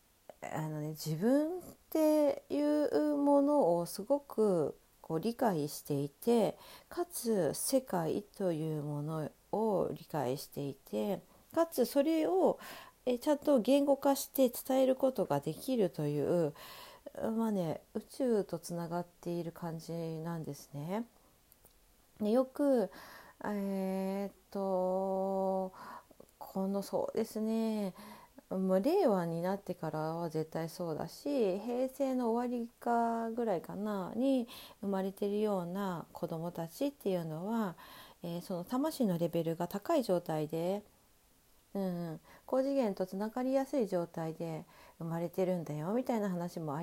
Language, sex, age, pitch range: Japanese, female, 40-59, 170-250 Hz